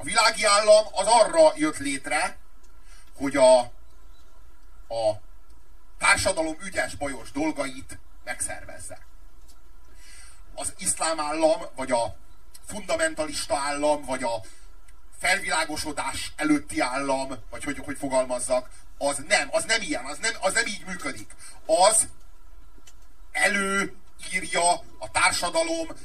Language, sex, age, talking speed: Hungarian, male, 40-59, 105 wpm